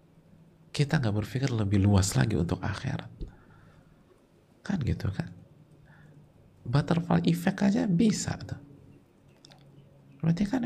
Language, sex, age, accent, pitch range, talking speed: Indonesian, male, 50-69, native, 100-155 Hz, 100 wpm